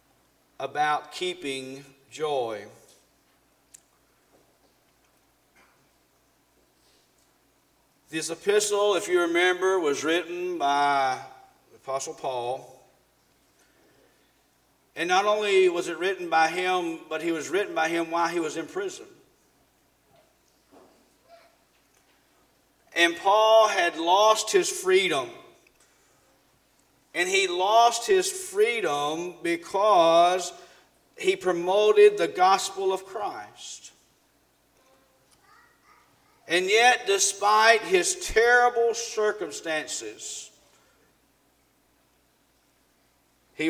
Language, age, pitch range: English, 40-59, 155-235 Hz